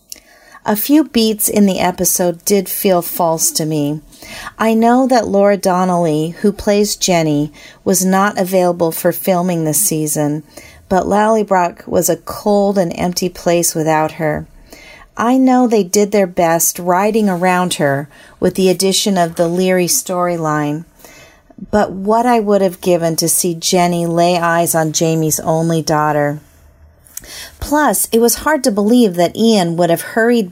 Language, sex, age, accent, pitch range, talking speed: English, female, 40-59, American, 165-205 Hz, 155 wpm